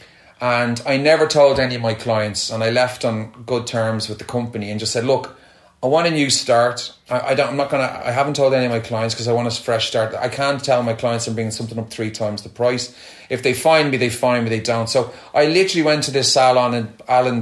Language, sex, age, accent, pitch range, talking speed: English, male, 30-49, Irish, 115-135 Hz, 265 wpm